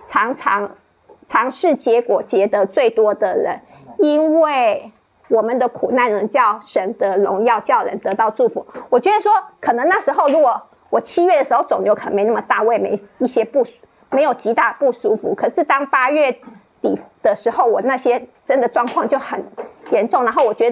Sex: female